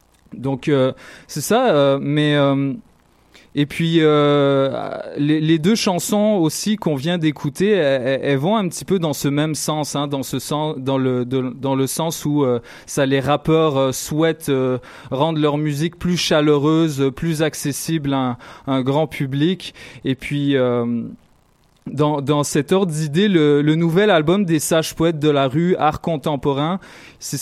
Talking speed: 175 wpm